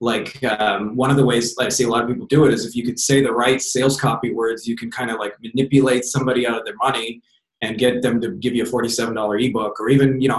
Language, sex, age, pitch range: English, male, 20-39, 110-135 Hz